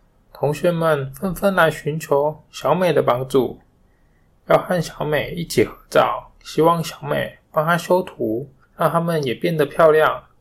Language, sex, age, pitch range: Chinese, male, 20-39, 125-175 Hz